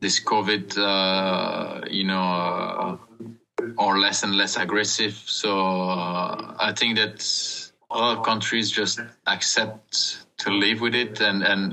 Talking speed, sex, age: 130 wpm, male, 20-39